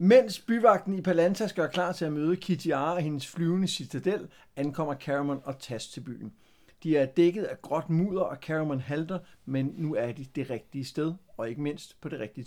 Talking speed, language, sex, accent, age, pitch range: 200 wpm, Danish, male, native, 60-79, 140-180 Hz